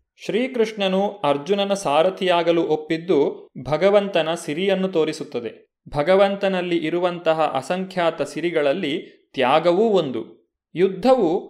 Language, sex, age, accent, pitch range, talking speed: Kannada, male, 30-49, native, 160-210 Hz, 75 wpm